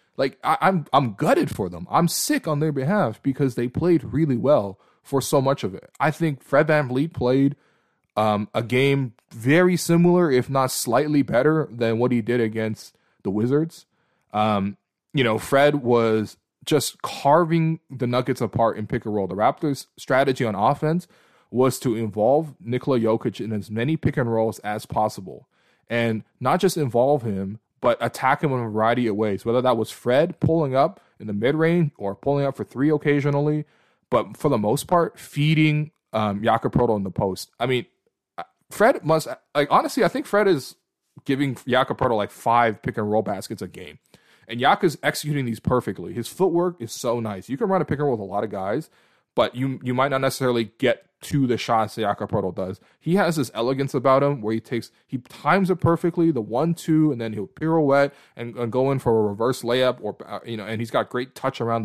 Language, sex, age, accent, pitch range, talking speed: English, male, 20-39, American, 115-150 Hz, 200 wpm